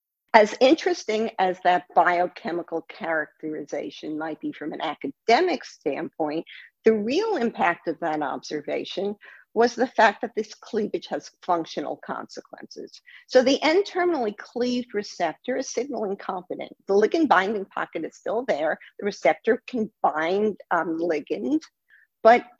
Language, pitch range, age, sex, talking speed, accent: English, 175-250 Hz, 50-69, female, 130 wpm, American